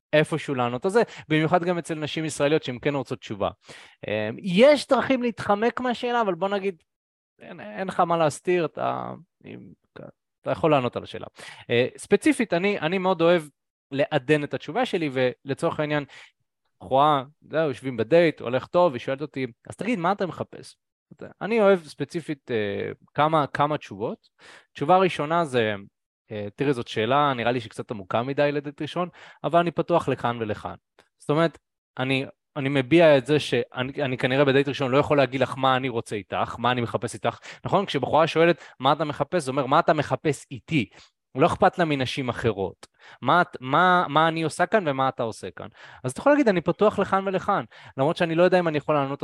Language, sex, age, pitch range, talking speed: Hebrew, male, 20-39, 130-175 Hz, 180 wpm